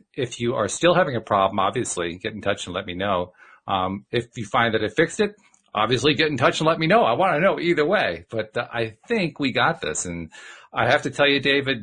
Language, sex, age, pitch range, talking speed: English, male, 40-59, 100-145 Hz, 260 wpm